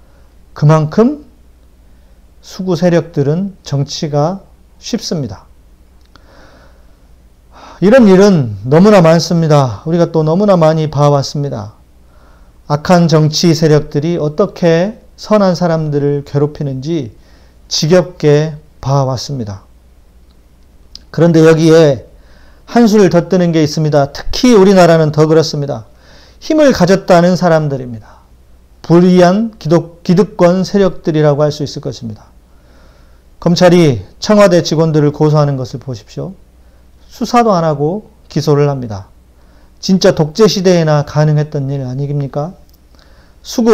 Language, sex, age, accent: Korean, male, 40-59, native